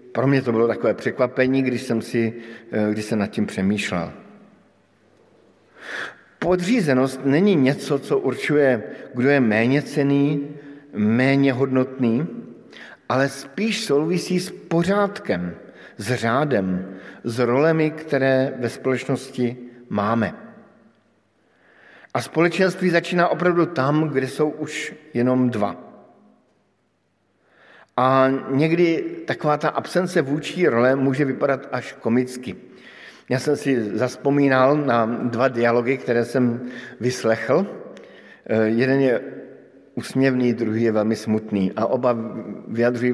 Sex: male